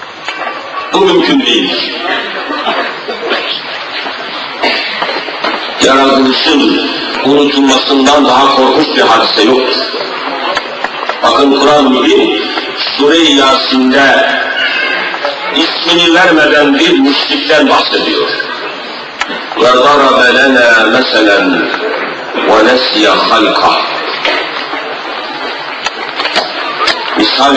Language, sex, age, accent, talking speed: Turkish, male, 50-69, native, 55 wpm